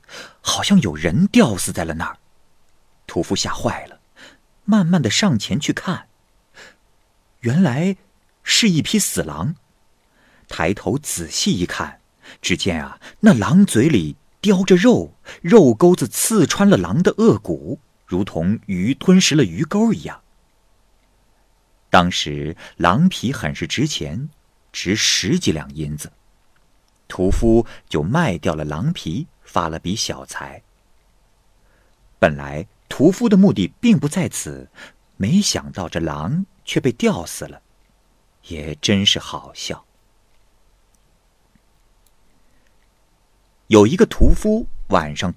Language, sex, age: Chinese, male, 50-69